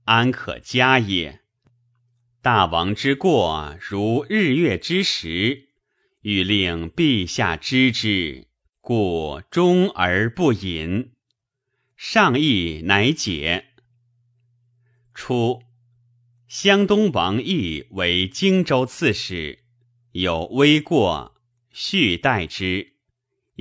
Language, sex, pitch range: Chinese, male, 95-130 Hz